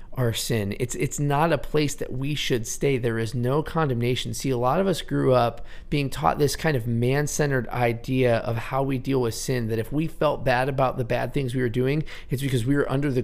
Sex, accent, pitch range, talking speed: male, American, 120-155 Hz, 240 wpm